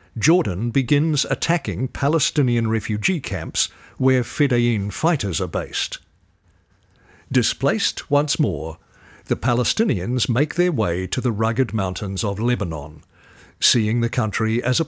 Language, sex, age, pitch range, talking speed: English, male, 50-69, 95-130 Hz, 120 wpm